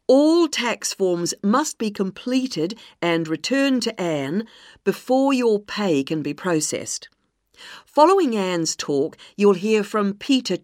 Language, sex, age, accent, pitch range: Chinese, female, 50-69, British, 165-235 Hz